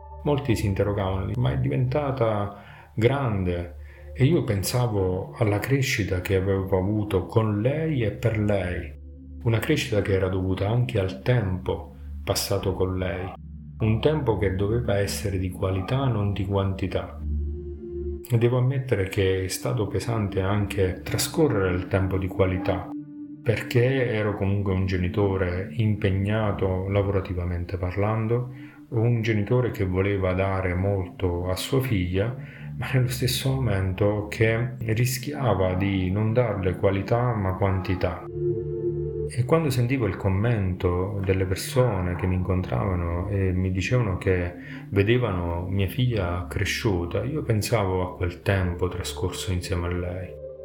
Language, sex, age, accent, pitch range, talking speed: Italian, male, 40-59, native, 95-120 Hz, 130 wpm